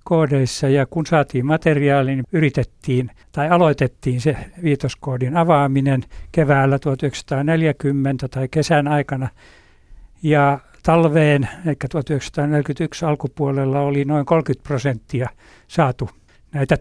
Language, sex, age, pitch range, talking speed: Finnish, male, 60-79, 125-150 Hz, 95 wpm